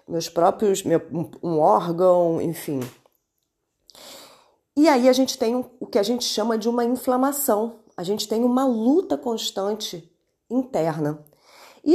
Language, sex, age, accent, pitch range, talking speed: Portuguese, female, 30-49, Brazilian, 160-225 Hz, 130 wpm